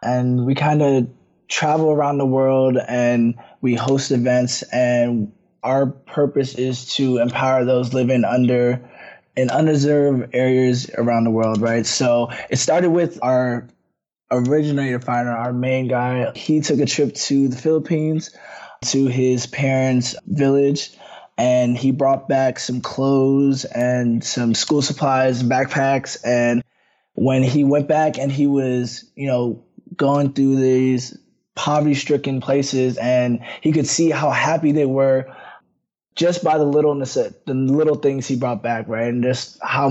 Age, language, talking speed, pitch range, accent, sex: 20-39, English, 145 wpm, 120-140 Hz, American, male